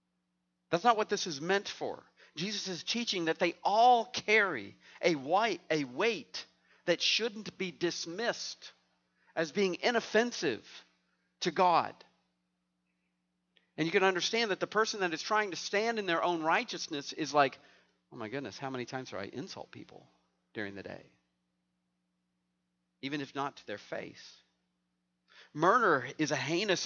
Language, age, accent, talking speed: English, 50-69, American, 150 wpm